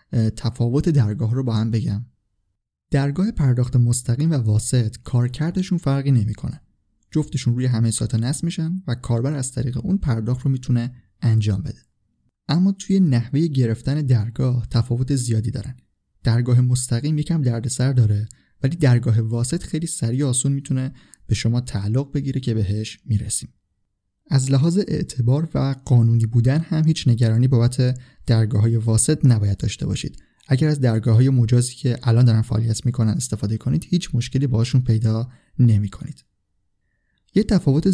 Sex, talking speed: male, 145 wpm